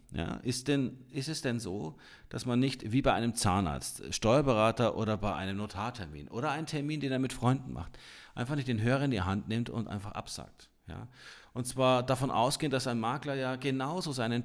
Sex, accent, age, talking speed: male, German, 40-59, 205 wpm